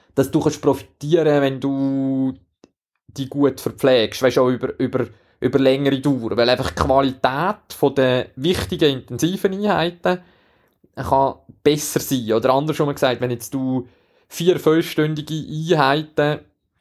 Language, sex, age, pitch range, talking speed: German, male, 20-39, 120-145 Hz, 125 wpm